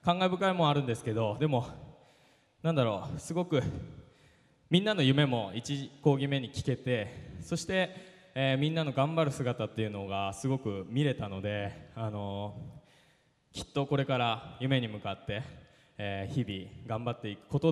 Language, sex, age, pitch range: Japanese, male, 20-39, 105-145 Hz